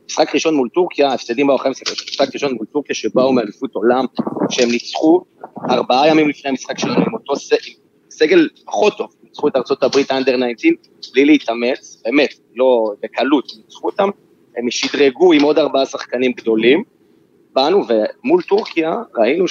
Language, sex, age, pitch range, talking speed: Hebrew, male, 30-49, 120-160 Hz, 165 wpm